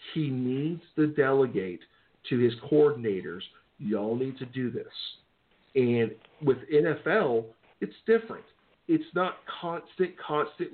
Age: 50-69